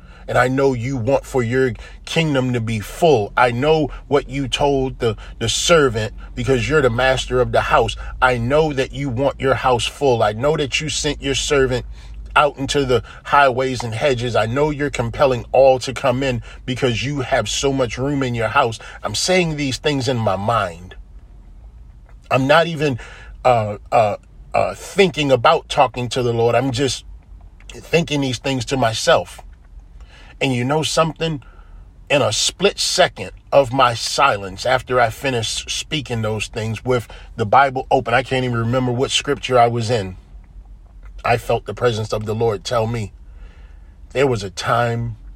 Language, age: English, 40-59